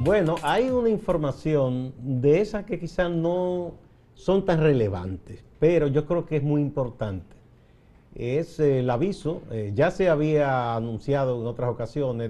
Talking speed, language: 150 wpm, Spanish